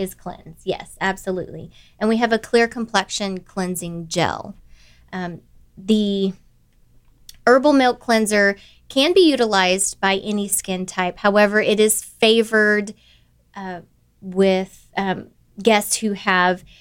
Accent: American